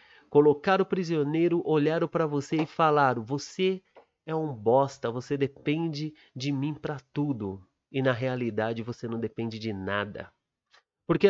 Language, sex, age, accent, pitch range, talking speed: Portuguese, male, 30-49, Brazilian, 125-150 Hz, 145 wpm